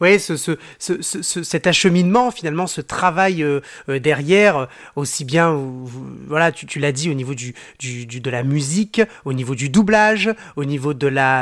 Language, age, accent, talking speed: French, 30-49, French, 205 wpm